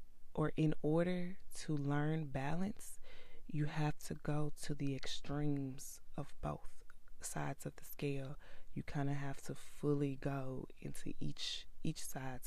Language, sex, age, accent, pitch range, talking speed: English, female, 20-39, American, 125-145 Hz, 145 wpm